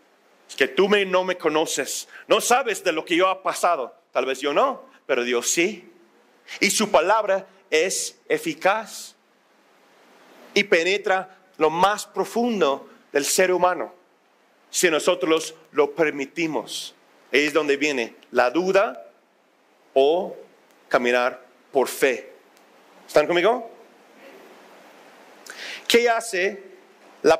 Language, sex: Spanish, male